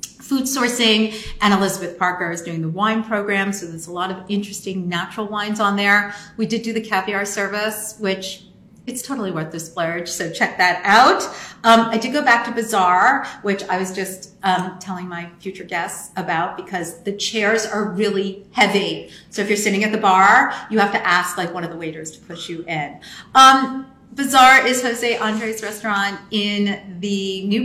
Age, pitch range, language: 40-59, 185-225 Hz, English